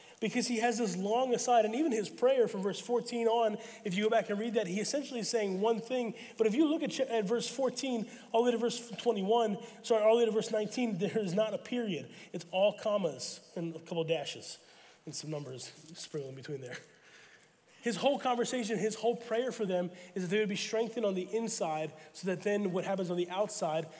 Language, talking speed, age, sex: English, 230 wpm, 30-49, male